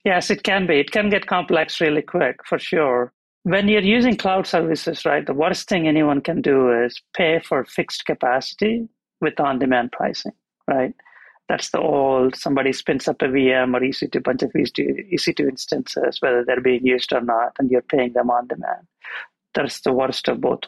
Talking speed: 190 wpm